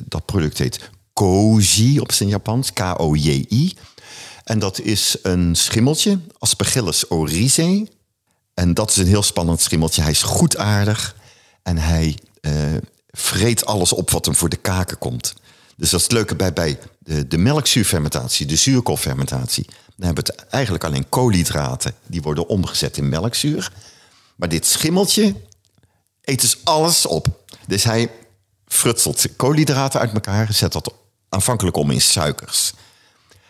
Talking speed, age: 145 wpm, 50-69